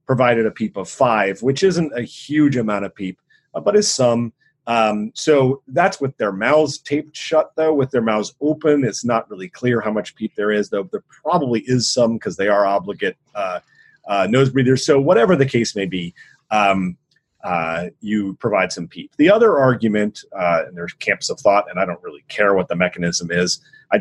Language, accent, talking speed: English, American, 200 wpm